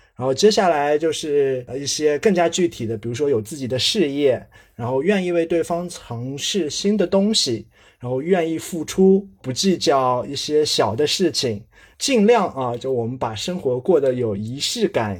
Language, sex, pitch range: Chinese, male, 125-180 Hz